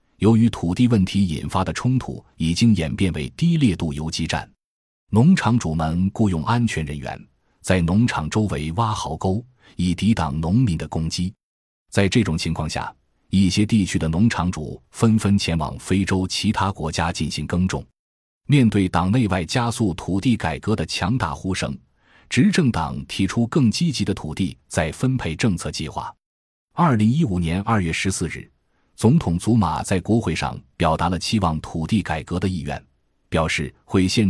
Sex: male